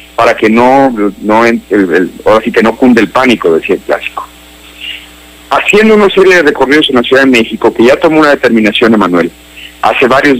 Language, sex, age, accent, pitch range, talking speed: Spanish, male, 50-69, Mexican, 95-145 Hz, 195 wpm